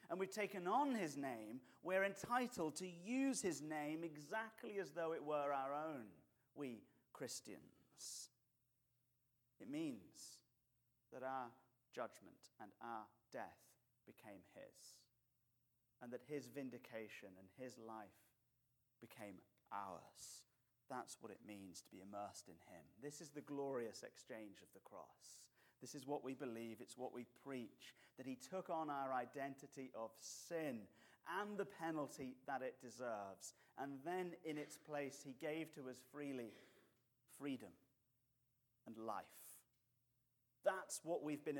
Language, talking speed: English, 140 wpm